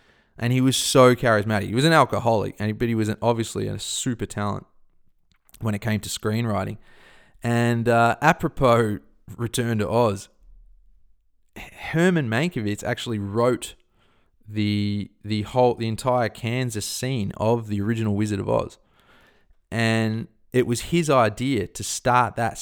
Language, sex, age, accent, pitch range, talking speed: English, male, 20-39, Australian, 100-120 Hz, 140 wpm